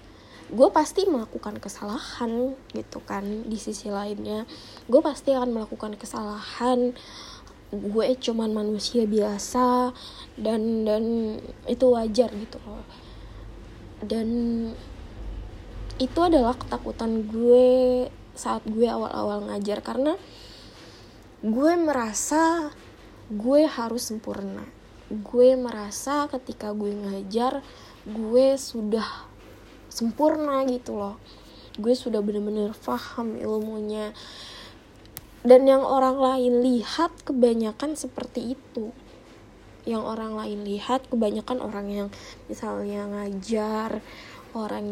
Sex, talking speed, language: female, 95 wpm, Indonesian